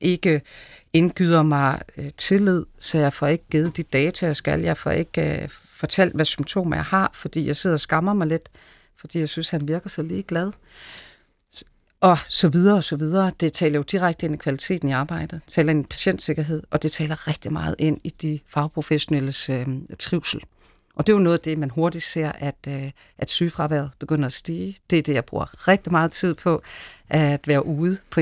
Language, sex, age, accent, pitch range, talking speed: Danish, female, 40-59, native, 145-175 Hz, 210 wpm